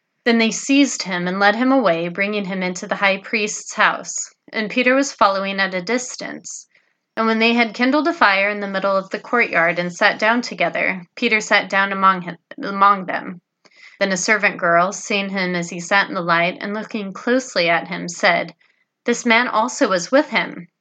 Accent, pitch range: American, 190-235 Hz